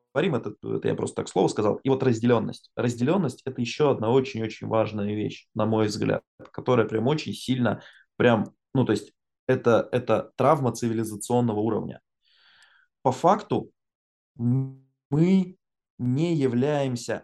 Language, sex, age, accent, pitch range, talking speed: Russian, male, 20-39, native, 115-140 Hz, 135 wpm